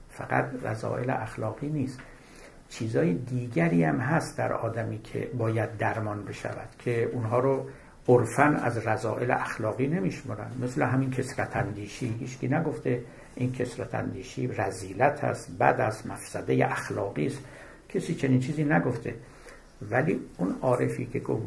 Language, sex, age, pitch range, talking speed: Persian, male, 60-79, 115-140 Hz, 135 wpm